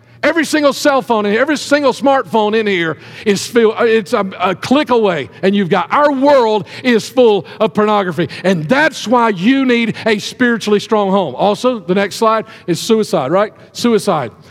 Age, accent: 50-69, American